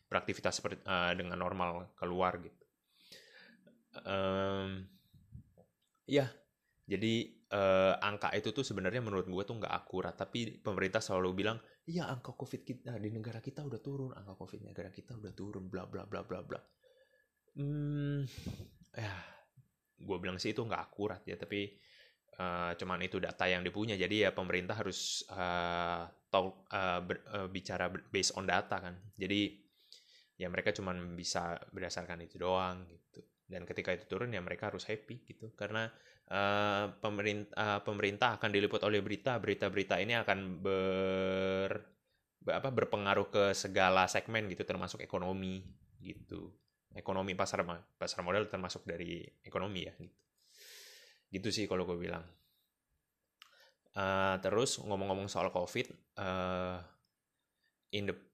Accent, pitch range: native, 90-105 Hz